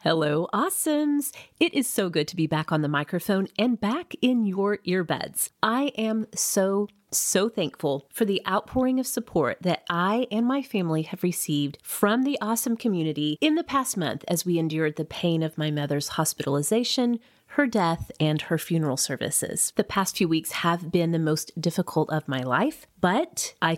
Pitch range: 160-215 Hz